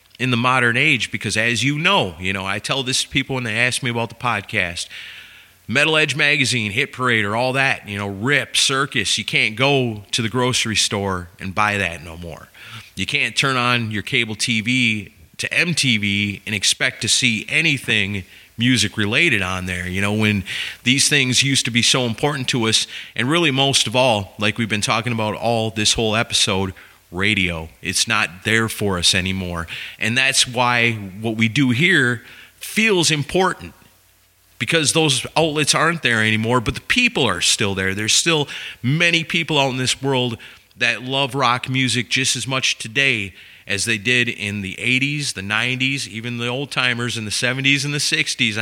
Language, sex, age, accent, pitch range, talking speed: English, male, 30-49, American, 100-130 Hz, 190 wpm